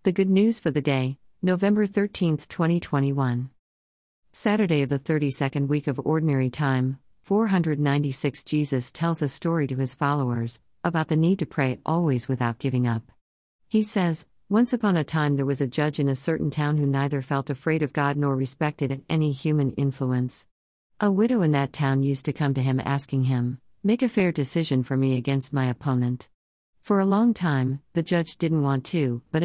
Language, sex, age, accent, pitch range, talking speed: English, female, 50-69, American, 130-160 Hz, 185 wpm